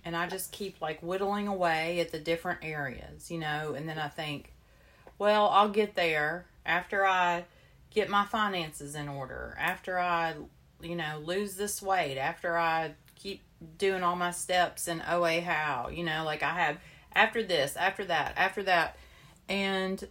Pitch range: 155-200 Hz